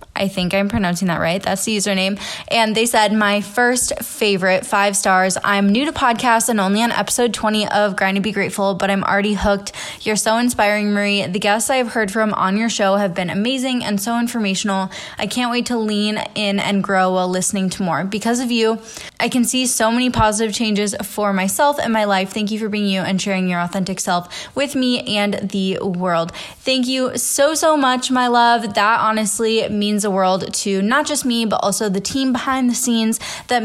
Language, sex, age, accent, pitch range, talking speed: English, female, 20-39, American, 195-235 Hz, 210 wpm